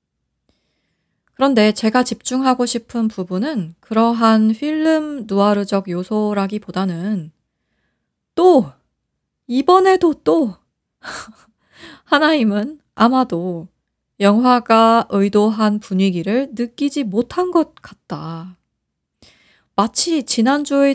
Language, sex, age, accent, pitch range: Korean, female, 20-39, native, 200-280 Hz